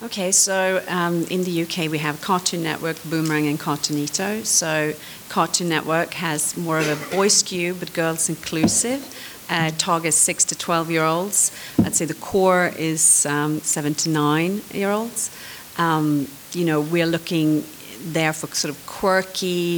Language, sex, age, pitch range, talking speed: English, female, 40-59, 145-175 Hz, 160 wpm